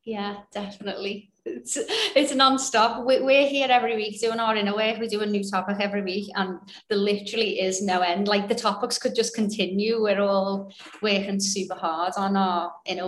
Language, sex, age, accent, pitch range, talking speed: English, female, 30-49, British, 195-245 Hz, 185 wpm